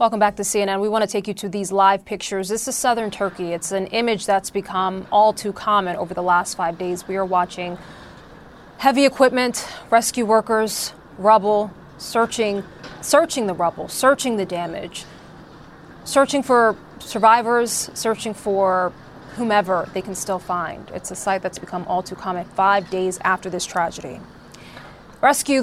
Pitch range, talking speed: 190-235 Hz, 160 wpm